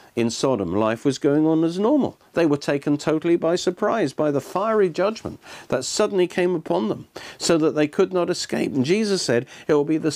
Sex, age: male, 50-69